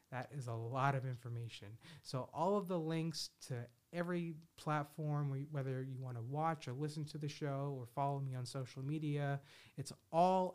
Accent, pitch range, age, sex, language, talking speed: American, 125-155 Hz, 30-49, male, English, 180 wpm